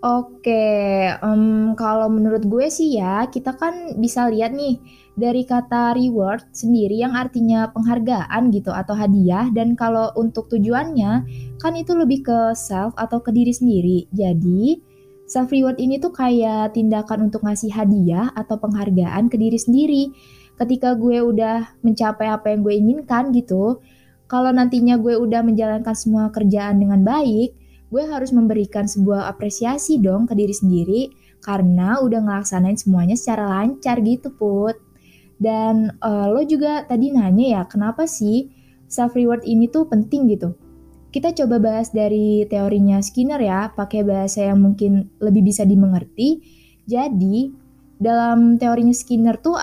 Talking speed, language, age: 145 wpm, Indonesian, 20-39